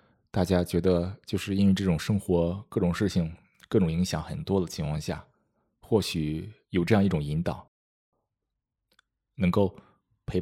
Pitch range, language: 85-105 Hz, Chinese